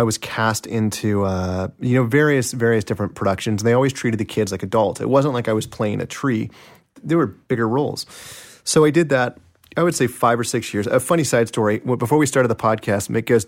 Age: 30-49